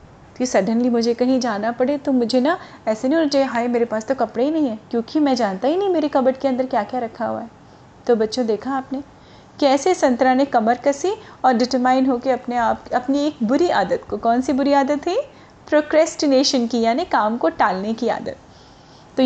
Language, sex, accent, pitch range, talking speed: Hindi, female, native, 230-295 Hz, 205 wpm